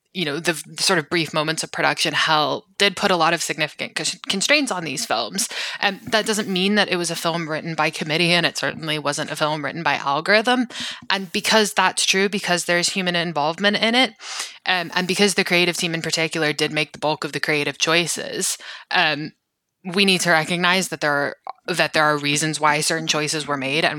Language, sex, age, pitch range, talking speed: English, female, 20-39, 150-190 Hz, 215 wpm